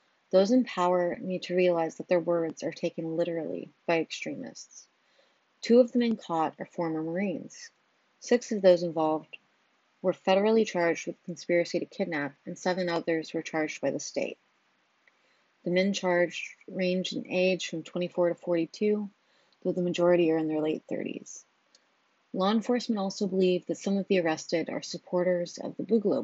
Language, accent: English, American